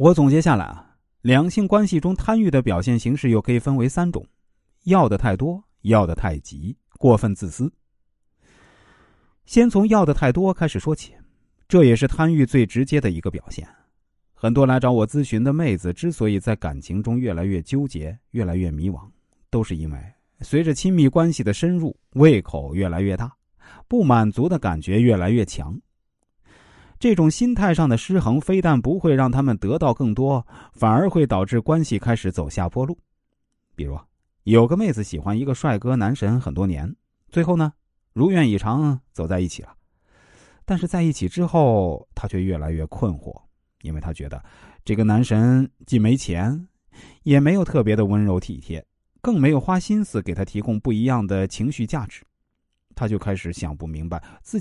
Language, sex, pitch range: Chinese, male, 95-150 Hz